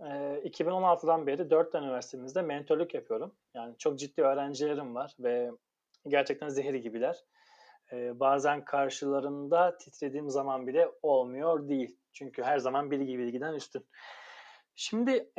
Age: 30-49